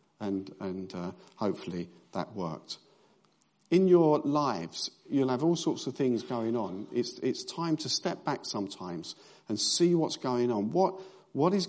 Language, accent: English, British